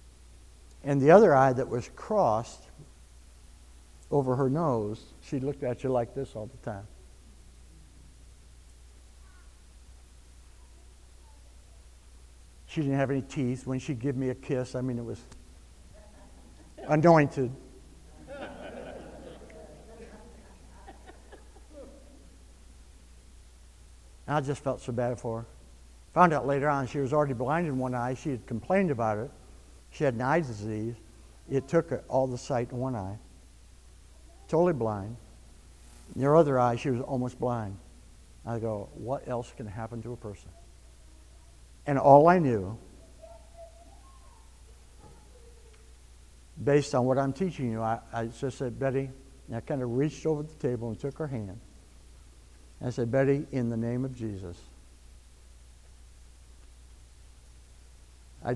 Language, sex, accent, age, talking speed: English, male, American, 60-79, 130 wpm